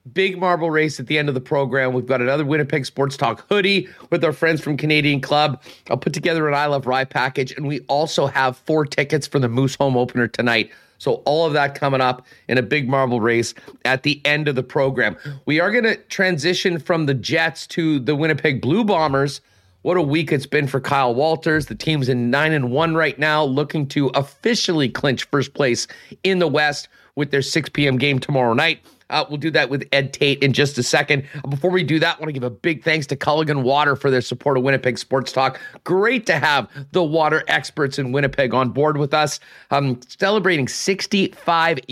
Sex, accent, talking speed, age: male, American, 215 wpm, 40-59